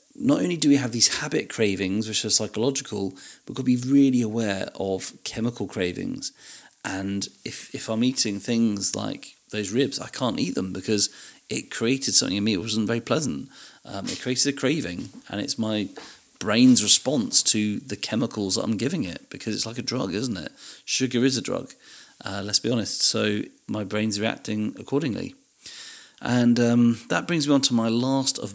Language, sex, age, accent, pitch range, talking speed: English, male, 40-59, British, 100-130 Hz, 185 wpm